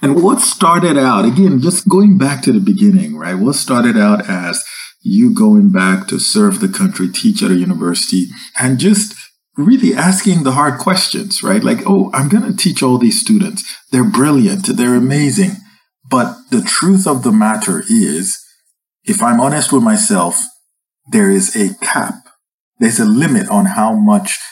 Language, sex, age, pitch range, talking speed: English, male, 50-69, 190-225 Hz, 170 wpm